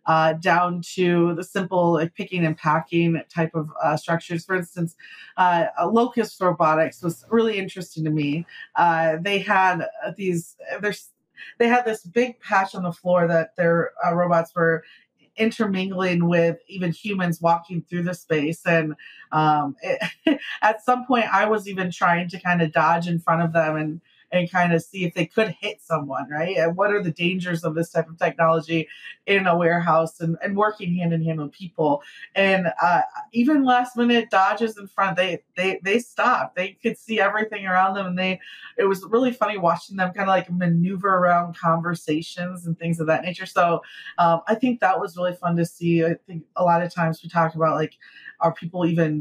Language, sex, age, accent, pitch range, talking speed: English, female, 30-49, American, 165-195 Hz, 195 wpm